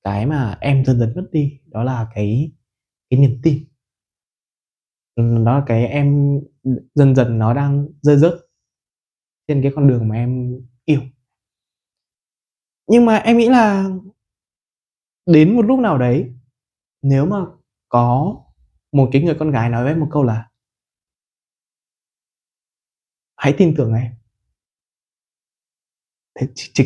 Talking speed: 130 wpm